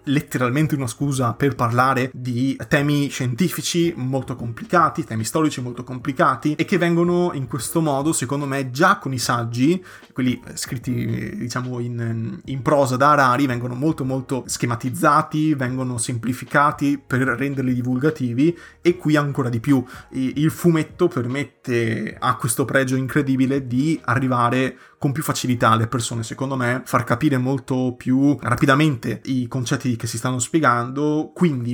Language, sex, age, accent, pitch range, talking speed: Italian, male, 20-39, native, 120-145 Hz, 145 wpm